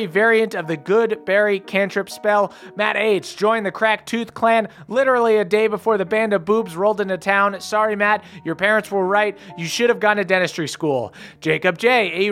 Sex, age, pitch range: male, 30-49, 185-225 Hz